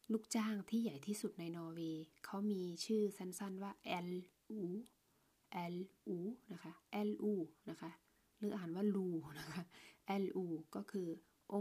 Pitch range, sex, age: 175-215 Hz, female, 20-39